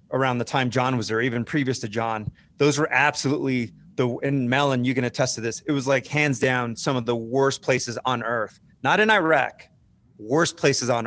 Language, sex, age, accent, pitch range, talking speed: English, male, 30-49, American, 120-150 Hz, 210 wpm